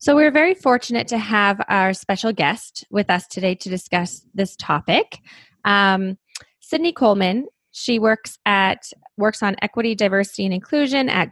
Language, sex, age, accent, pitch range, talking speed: English, female, 20-39, American, 190-230 Hz, 155 wpm